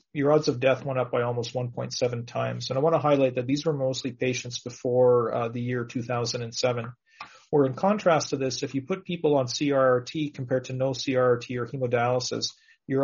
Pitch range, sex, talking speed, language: 120-145 Hz, male, 200 wpm, English